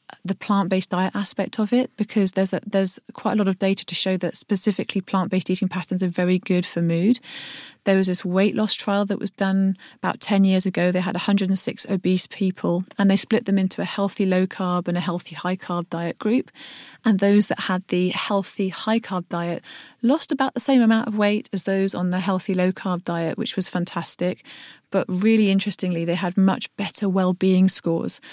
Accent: British